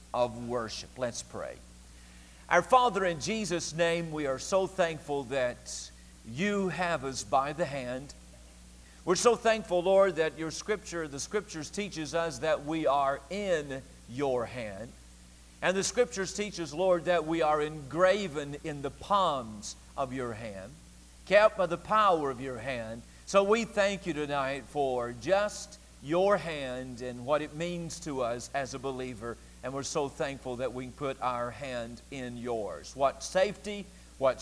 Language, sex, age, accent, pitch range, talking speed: English, male, 50-69, American, 125-190 Hz, 160 wpm